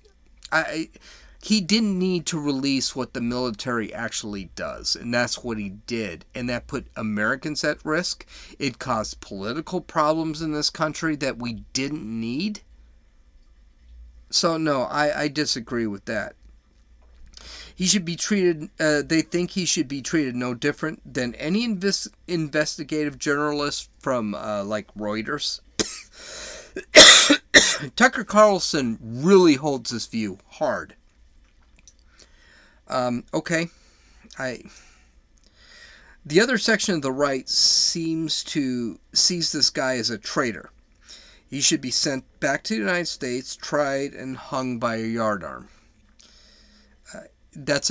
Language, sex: English, male